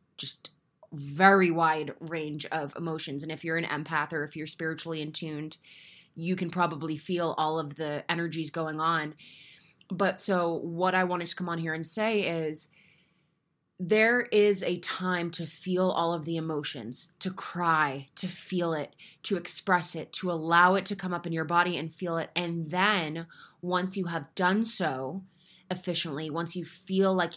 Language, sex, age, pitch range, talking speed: English, female, 20-39, 160-190 Hz, 175 wpm